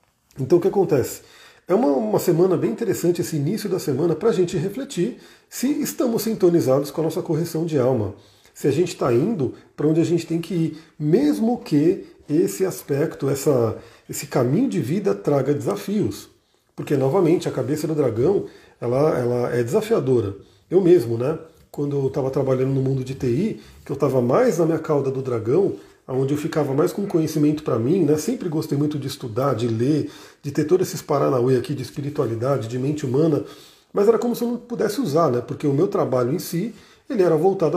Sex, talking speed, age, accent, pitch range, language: male, 200 wpm, 40-59, Brazilian, 130-170 Hz, Portuguese